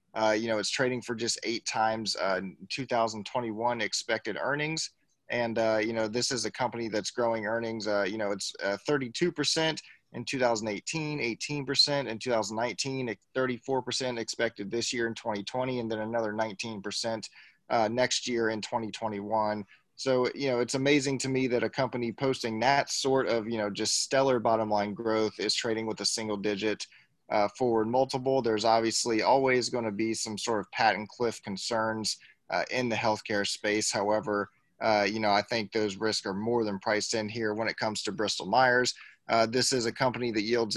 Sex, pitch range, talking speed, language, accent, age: male, 110-125 Hz, 180 wpm, English, American, 30-49